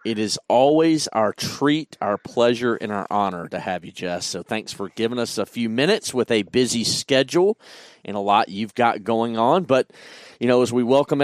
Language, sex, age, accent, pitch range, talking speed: English, male, 40-59, American, 110-135 Hz, 210 wpm